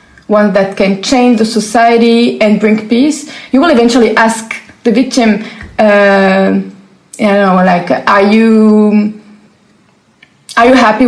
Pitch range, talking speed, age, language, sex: 215-255 Hz, 130 wpm, 20-39, Arabic, female